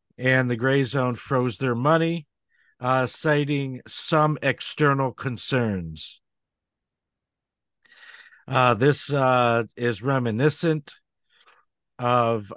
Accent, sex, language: American, male, English